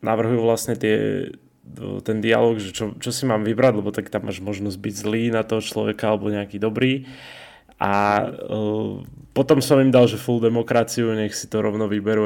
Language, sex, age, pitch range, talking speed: Slovak, male, 20-39, 105-125 Hz, 185 wpm